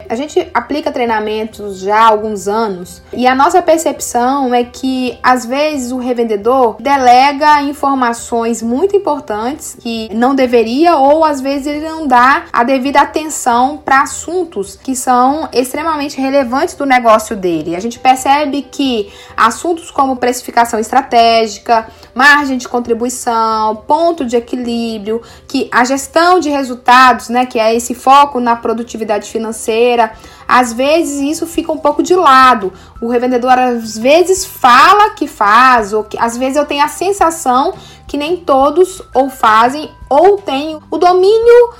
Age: 10-29